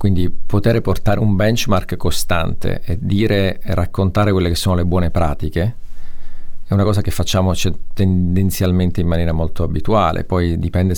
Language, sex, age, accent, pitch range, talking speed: Italian, male, 40-59, native, 85-100 Hz, 155 wpm